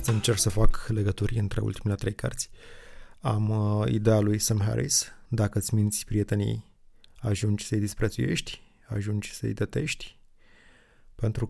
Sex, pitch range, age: male, 100-115 Hz, 20-39